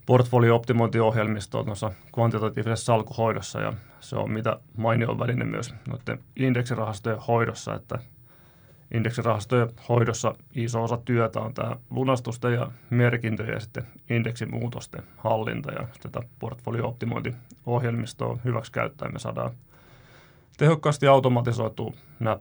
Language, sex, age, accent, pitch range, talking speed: Finnish, male, 30-49, native, 115-135 Hz, 105 wpm